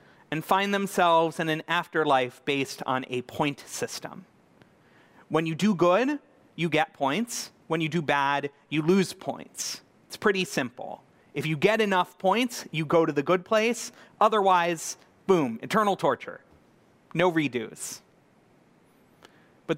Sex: male